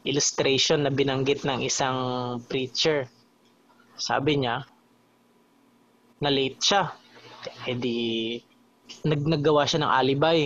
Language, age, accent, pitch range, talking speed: Filipino, 20-39, native, 130-175 Hz, 90 wpm